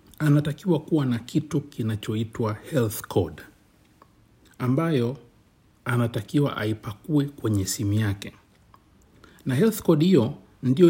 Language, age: Swahili, 60-79